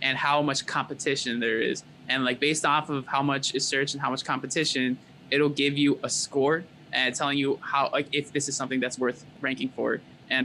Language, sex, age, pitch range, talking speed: English, male, 20-39, 130-150 Hz, 220 wpm